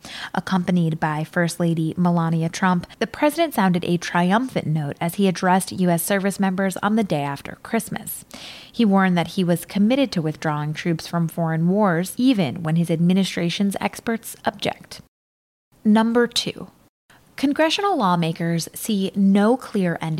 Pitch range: 165-195 Hz